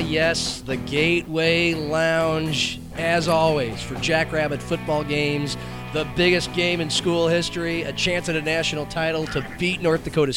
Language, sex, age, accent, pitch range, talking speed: English, male, 40-59, American, 135-165 Hz, 150 wpm